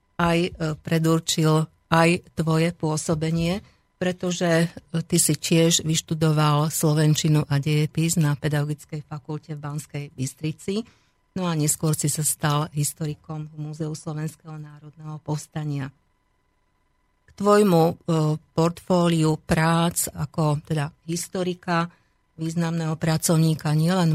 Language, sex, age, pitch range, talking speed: Slovak, female, 50-69, 155-170 Hz, 100 wpm